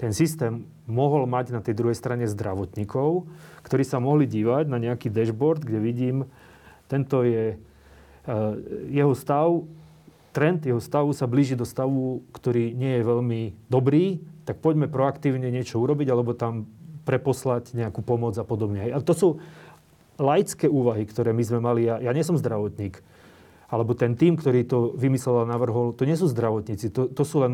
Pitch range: 115-145 Hz